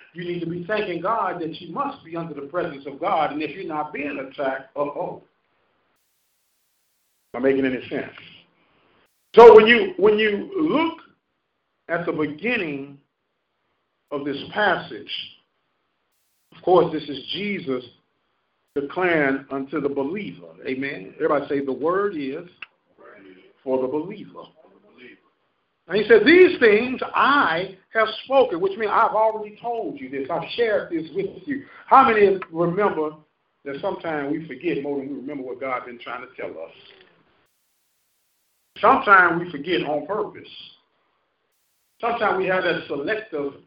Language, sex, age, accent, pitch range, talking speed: English, male, 50-69, American, 145-215 Hz, 145 wpm